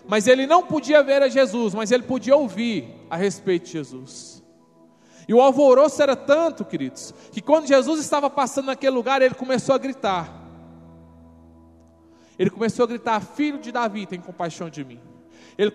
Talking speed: 170 wpm